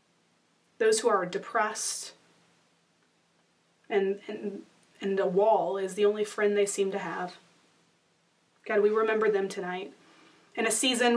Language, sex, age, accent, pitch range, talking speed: English, female, 30-49, American, 205-240 Hz, 135 wpm